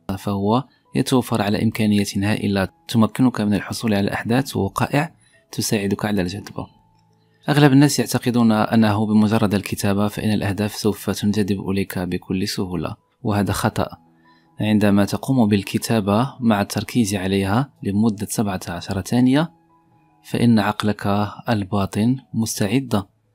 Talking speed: 110 wpm